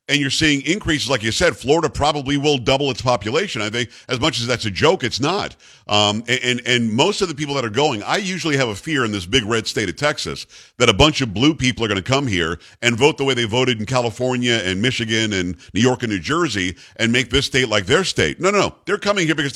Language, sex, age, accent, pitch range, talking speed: English, male, 50-69, American, 115-145 Hz, 265 wpm